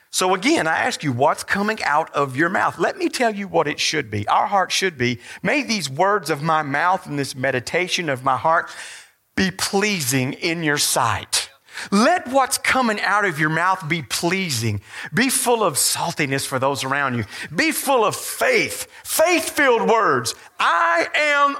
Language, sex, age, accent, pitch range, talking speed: English, male, 40-59, American, 165-270 Hz, 185 wpm